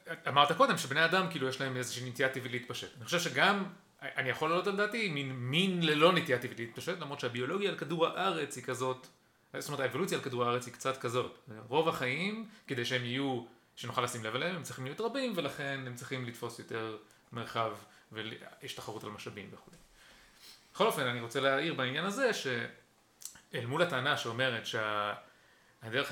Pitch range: 120-155 Hz